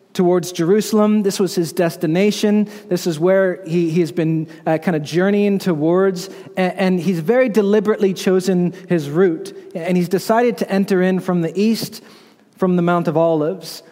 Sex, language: male, English